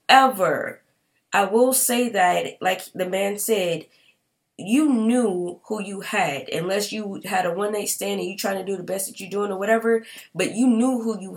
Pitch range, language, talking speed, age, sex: 180-220 Hz, English, 200 wpm, 20-39, female